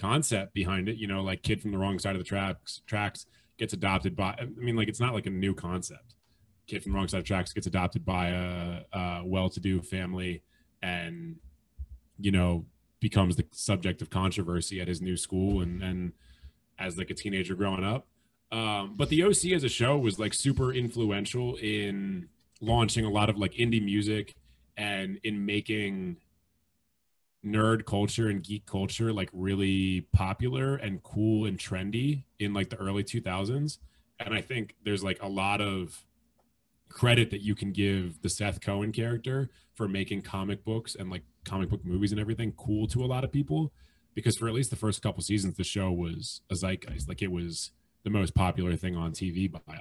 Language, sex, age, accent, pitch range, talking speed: English, male, 20-39, American, 95-110 Hz, 190 wpm